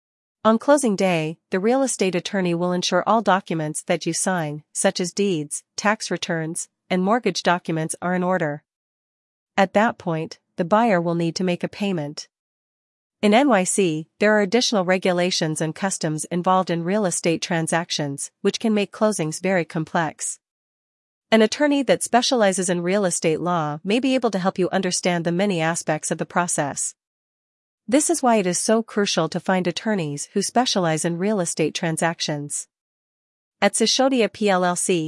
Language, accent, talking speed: English, American, 165 wpm